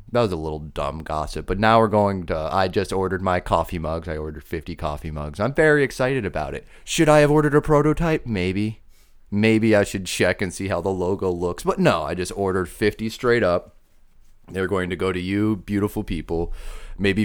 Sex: male